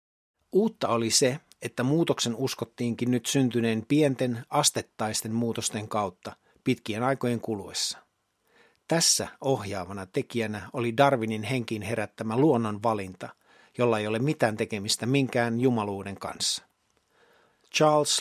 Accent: native